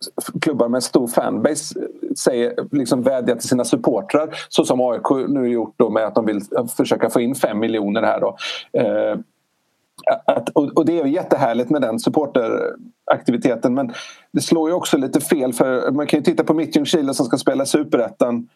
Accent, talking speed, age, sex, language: native, 185 wpm, 40-59, male, Swedish